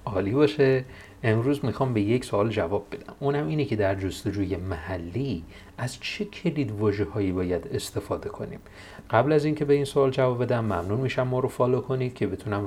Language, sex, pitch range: Persian, male, 100-130 Hz